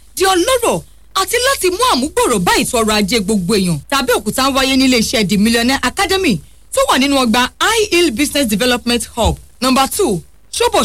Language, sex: English, female